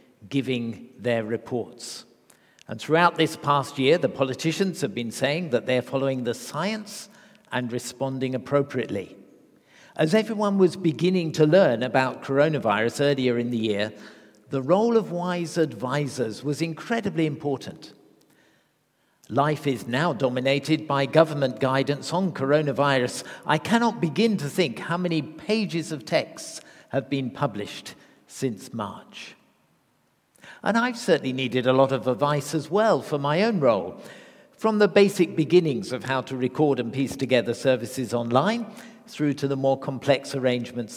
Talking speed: 145 wpm